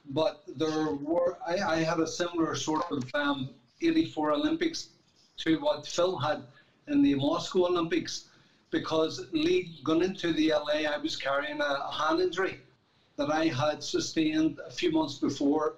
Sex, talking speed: male, 150 wpm